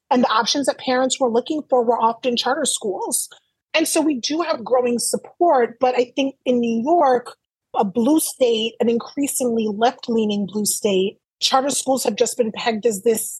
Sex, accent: female, American